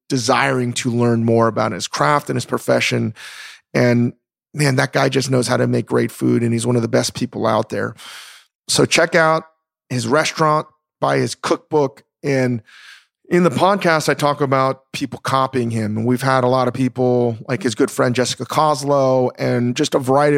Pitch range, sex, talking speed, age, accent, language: 115-140 Hz, male, 190 wpm, 40-59, American, English